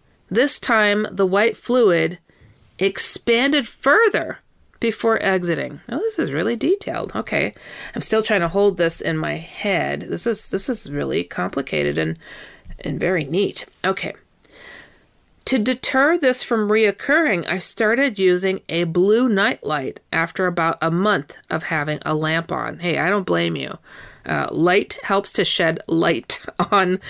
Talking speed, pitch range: 150 wpm, 165-235 Hz